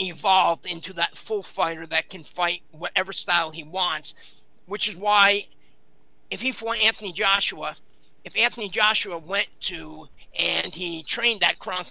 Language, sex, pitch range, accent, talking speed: English, male, 165-215 Hz, American, 150 wpm